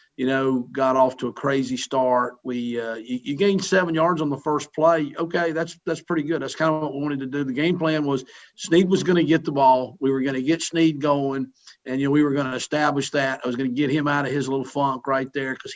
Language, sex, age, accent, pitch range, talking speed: English, male, 50-69, American, 130-145 Hz, 280 wpm